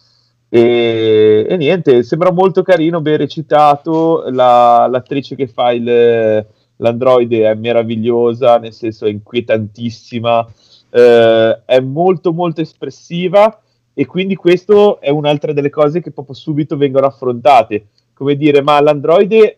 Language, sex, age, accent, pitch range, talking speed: Italian, male, 30-49, native, 120-155 Hz, 125 wpm